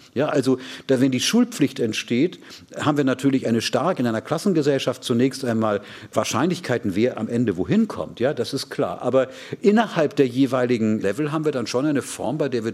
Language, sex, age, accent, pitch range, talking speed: German, male, 40-59, German, 110-135 Hz, 190 wpm